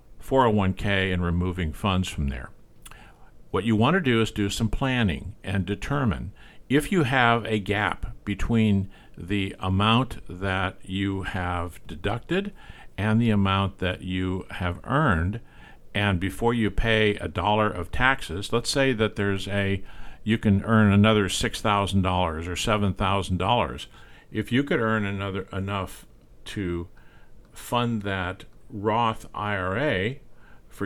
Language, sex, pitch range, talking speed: English, male, 95-110 Hz, 130 wpm